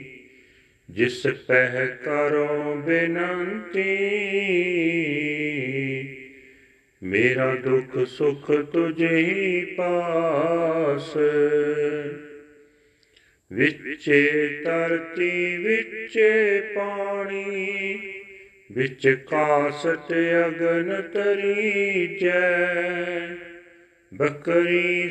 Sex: male